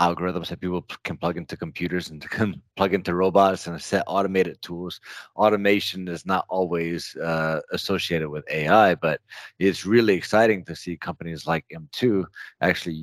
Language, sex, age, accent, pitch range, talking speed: English, male, 30-49, American, 85-100 Hz, 160 wpm